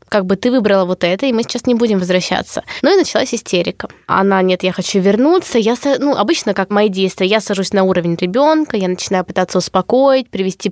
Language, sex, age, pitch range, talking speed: Russian, female, 20-39, 185-240 Hz, 205 wpm